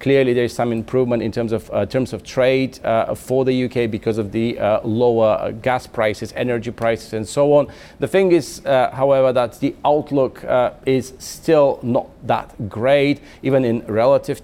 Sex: male